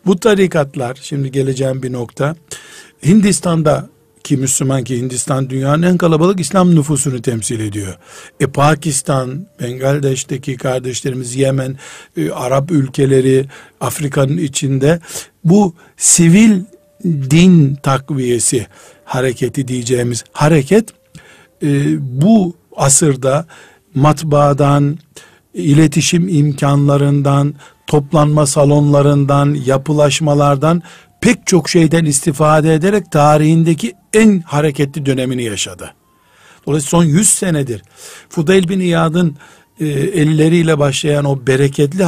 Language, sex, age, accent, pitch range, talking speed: Turkish, male, 60-79, native, 135-170 Hz, 95 wpm